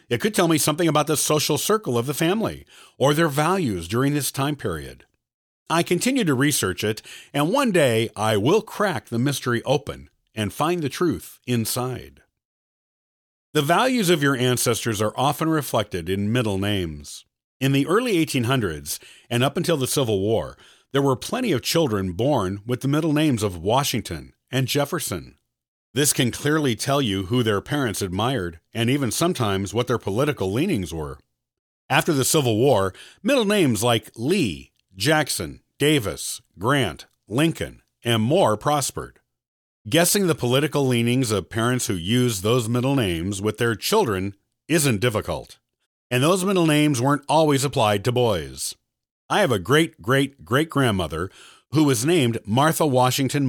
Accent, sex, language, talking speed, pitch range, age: American, male, English, 155 wpm, 105-150 Hz, 50-69